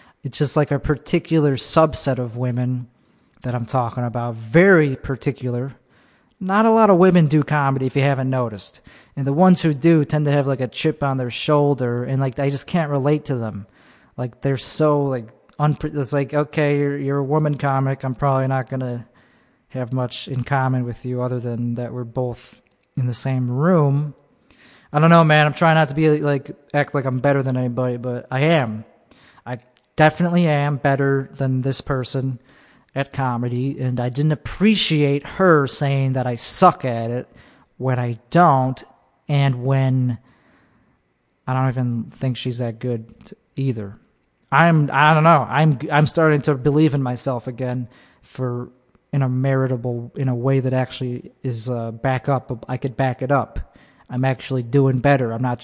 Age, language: 20-39, English